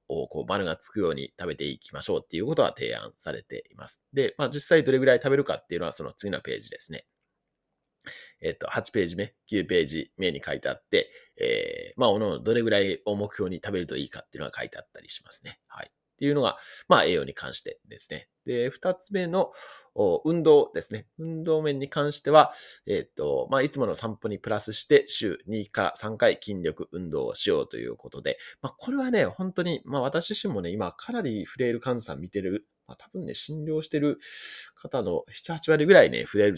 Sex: male